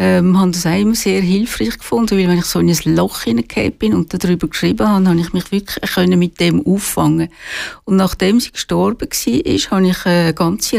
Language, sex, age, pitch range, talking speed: German, female, 60-79, 170-200 Hz, 210 wpm